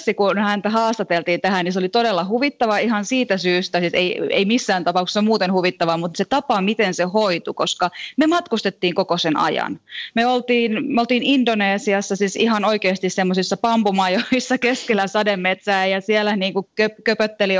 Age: 20-39